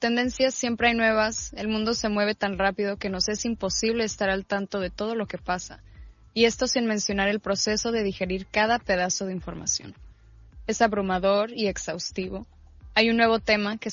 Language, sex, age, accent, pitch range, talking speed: Spanish, female, 20-39, Mexican, 190-220 Hz, 185 wpm